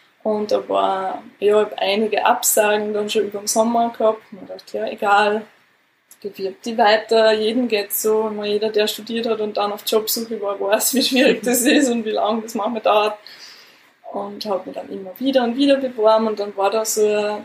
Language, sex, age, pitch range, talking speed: German, female, 20-39, 210-235 Hz, 210 wpm